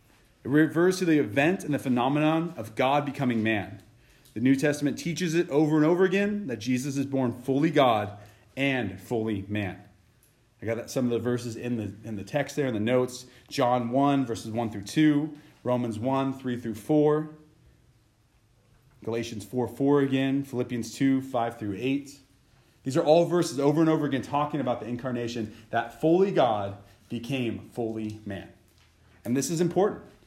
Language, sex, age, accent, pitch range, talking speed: English, male, 30-49, American, 115-150 Hz, 170 wpm